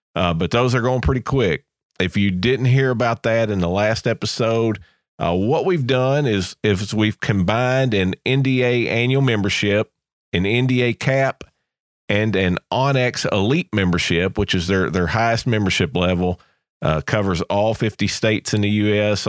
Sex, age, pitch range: male, 40-59, 95-125 Hz